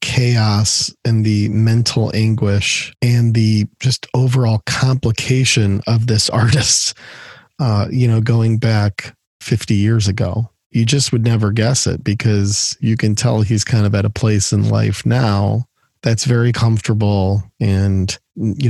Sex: male